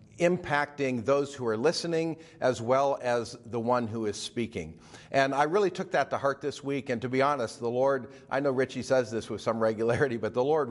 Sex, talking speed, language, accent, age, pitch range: male, 220 wpm, English, American, 50-69, 105-135 Hz